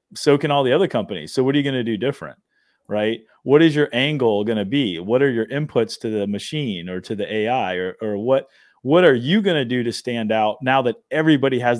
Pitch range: 115-150 Hz